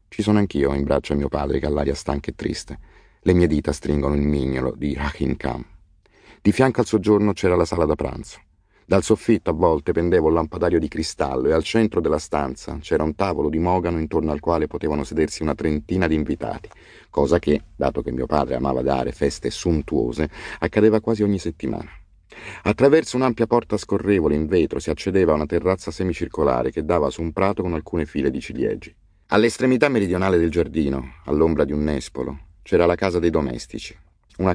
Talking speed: 190 wpm